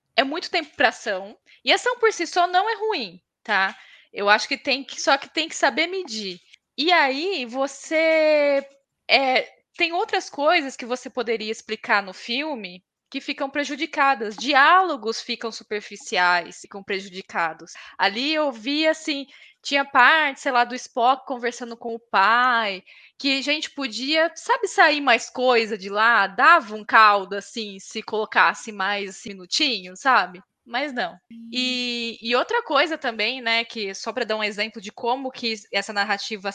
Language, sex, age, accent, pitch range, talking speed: Portuguese, female, 10-29, Brazilian, 205-290 Hz, 165 wpm